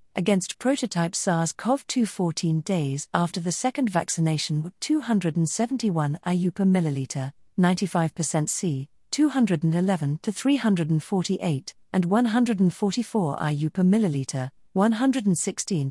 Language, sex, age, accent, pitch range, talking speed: English, female, 40-59, British, 155-205 Hz, 95 wpm